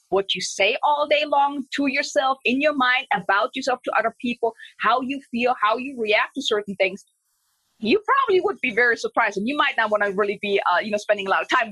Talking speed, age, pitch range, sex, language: 240 wpm, 30-49, 210-295 Hz, female, English